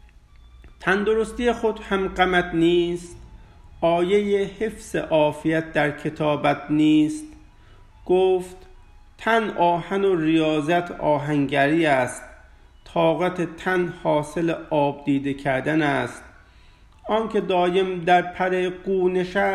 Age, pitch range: 50-69, 140-180 Hz